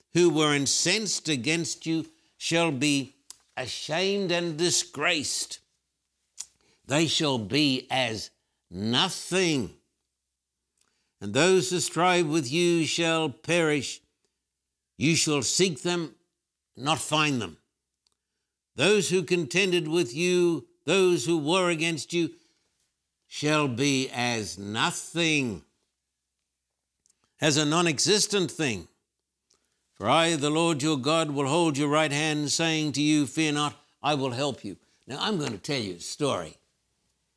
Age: 60-79